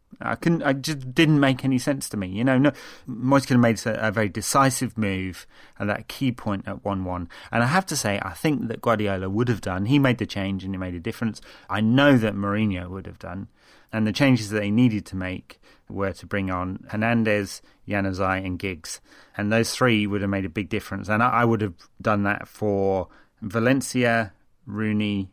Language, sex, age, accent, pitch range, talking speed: English, male, 30-49, British, 100-120 Hz, 220 wpm